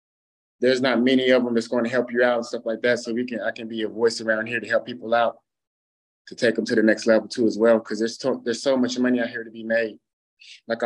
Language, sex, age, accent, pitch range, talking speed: English, male, 20-39, American, 115-130 Hz, 285 wpm